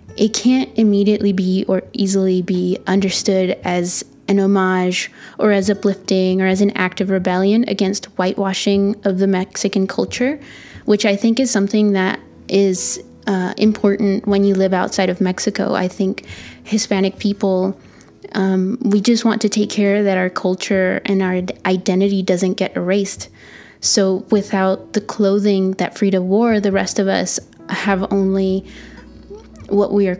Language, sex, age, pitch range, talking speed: English, female, 20-39, 190-210 Hz, 155 wpm